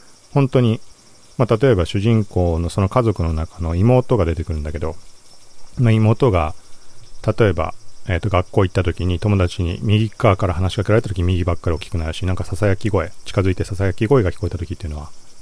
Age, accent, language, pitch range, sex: 40-59, native, Japanese, 90-125 Hz, male